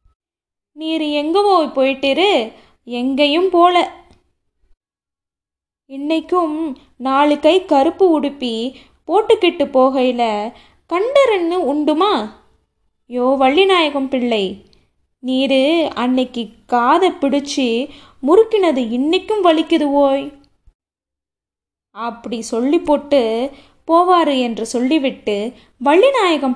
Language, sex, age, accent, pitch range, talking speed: Tamil, female, 20-39, native, 255-335 Hz, 70 wpm